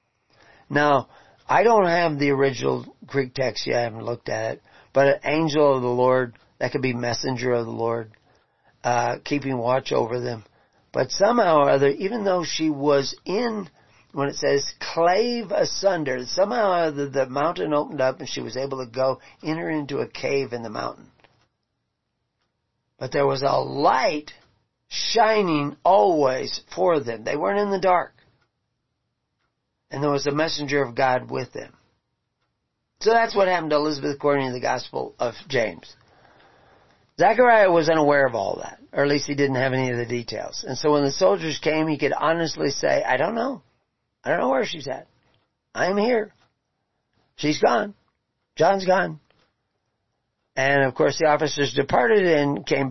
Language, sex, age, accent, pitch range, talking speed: English, male, 40-59, American, 130-160 Hz, 170 wpm